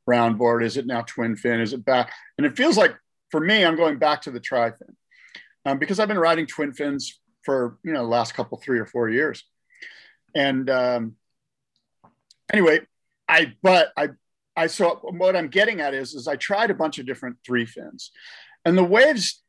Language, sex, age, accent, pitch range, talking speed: English, male, 40-59, American, 125-180 Hz, 195 wpm